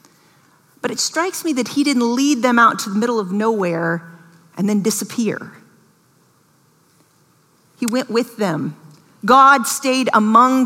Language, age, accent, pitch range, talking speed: English, 40-59, American, 210-275 Hz, 140 wpm